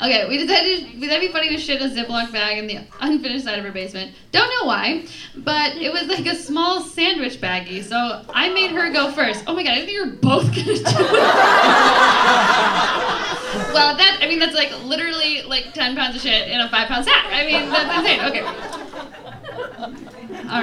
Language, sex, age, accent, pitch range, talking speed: English, female, 10-29, American, 250-350 Hz, 210 wpm